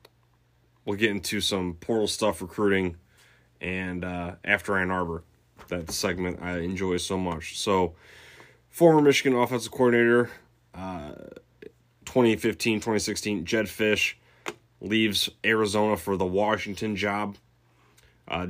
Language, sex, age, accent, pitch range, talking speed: English, male, 20-39, American, 90-110 Hz, 115 wpm